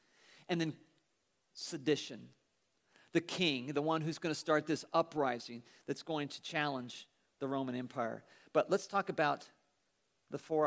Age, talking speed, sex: 50-69, 145 wpm, male